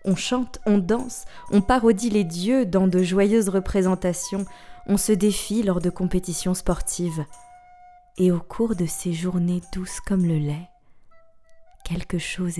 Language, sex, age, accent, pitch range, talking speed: French, female, 20-39, French, 165-195 Hz, 150 wpm